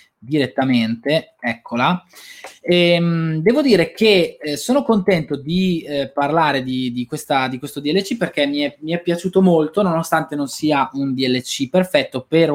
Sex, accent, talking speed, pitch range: male, native, 145 wpm, 125-170 Hz